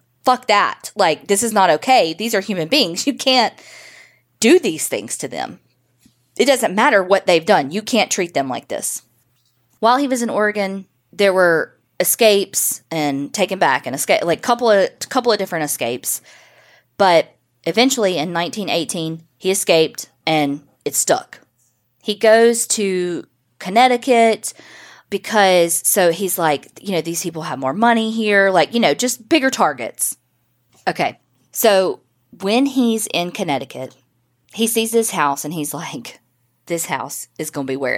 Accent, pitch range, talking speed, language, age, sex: American, 155-215 Hz, 160 wpm, English, 20-39, female